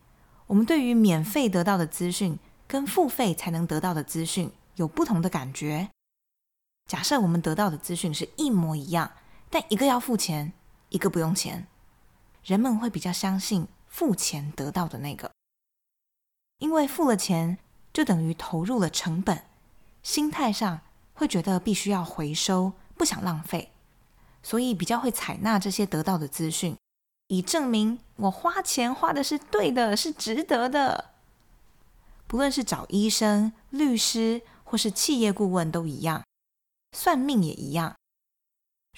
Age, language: 20-39, Chinese